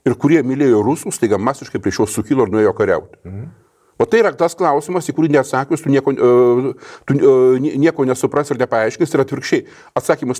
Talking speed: 160 wpm